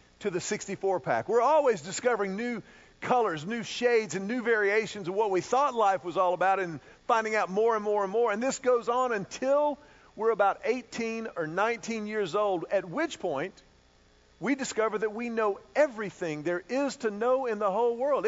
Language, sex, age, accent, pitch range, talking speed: English, male, 40-59, American, 180-240 Hz, 190 wpm